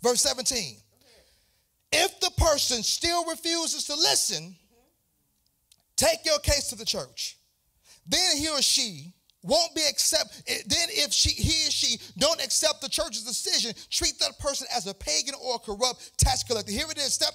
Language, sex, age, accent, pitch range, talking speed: English, male, 40-59, American, 220-295 Hz, 160 wpm